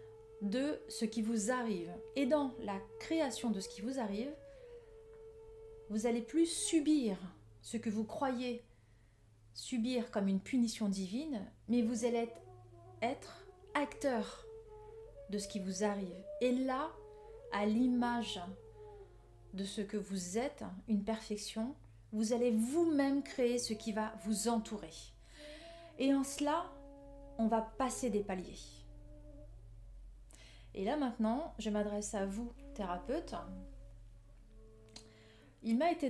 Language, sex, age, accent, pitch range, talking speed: French, female, 30-49, French, 180-260 Hz, 125 wpm